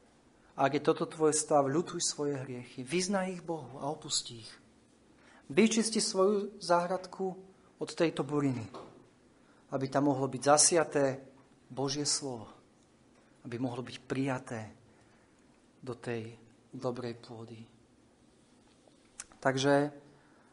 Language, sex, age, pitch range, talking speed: Slovak, male, 40-59, 125-150 Hz, 110 wpm